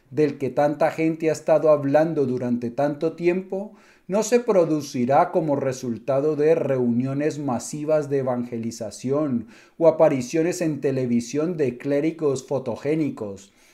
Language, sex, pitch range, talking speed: Spanish, male, 130-165 Hz, 120 wpm